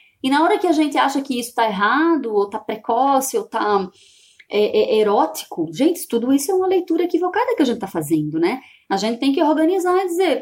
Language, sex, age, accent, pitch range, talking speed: Portuguese, female, 20-39, Brazilian, 215-315 Hz, 225 wpm